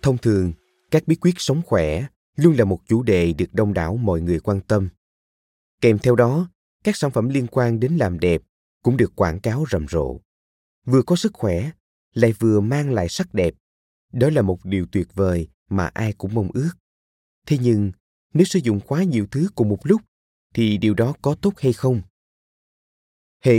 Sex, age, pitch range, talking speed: male, 20-39, 85-135 Hz, 195 wpm